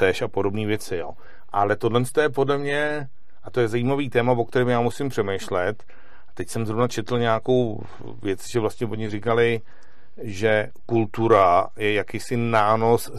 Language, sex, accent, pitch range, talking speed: Czech, male, native, 100-120 Hz, 165 wpm